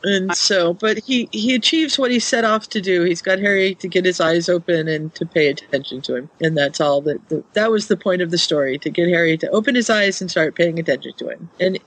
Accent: American